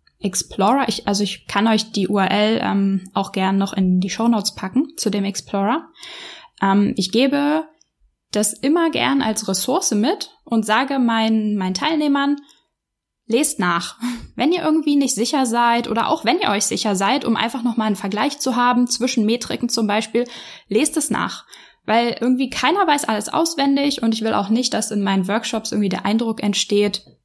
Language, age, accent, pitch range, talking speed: German, 10-29, German, 200-255 Hz, 175 wpm